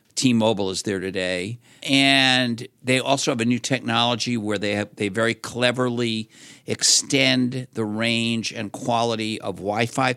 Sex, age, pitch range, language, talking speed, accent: male, 50-69, 100-125 Hz, English, 140 wpm, American